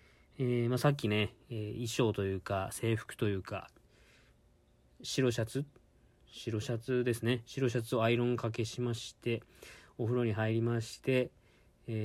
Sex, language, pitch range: male, Japanese, 110-135 Hz